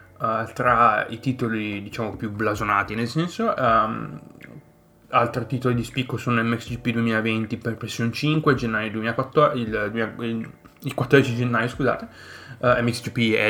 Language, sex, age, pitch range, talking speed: Italian, male, 20-39, 110-130 Hz, 140 wpm